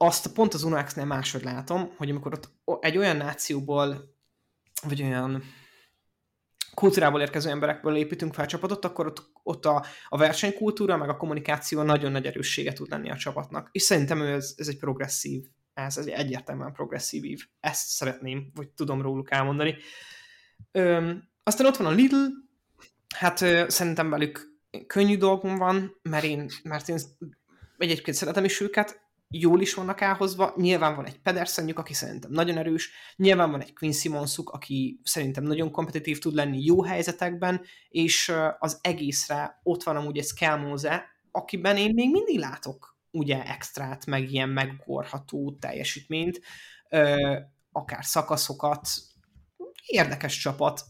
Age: 20-39